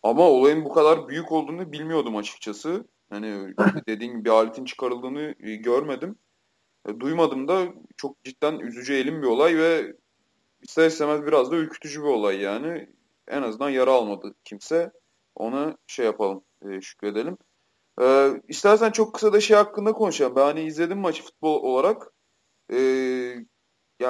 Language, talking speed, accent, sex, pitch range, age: Turkish, 135 wpm, native, male, 125-185 Hz, 30-49